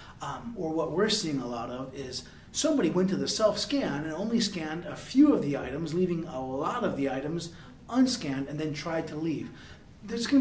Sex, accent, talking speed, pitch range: male, American, 210 wpm, 145-185 Hz